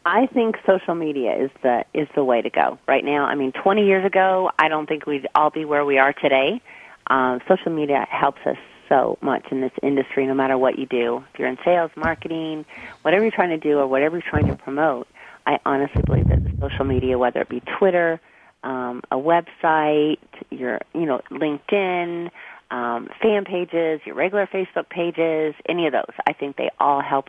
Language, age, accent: English, 30-49, American